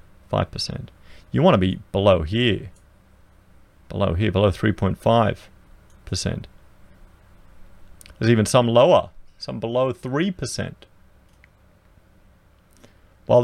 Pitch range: 95-125 Hz